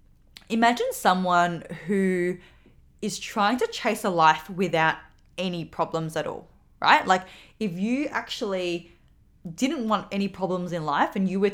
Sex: female